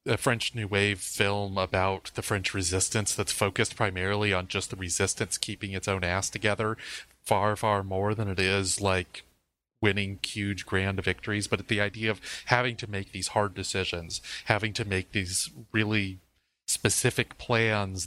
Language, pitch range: English, 95-115 Hz